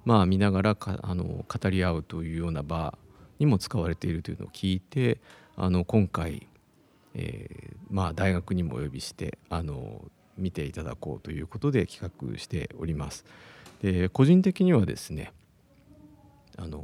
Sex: male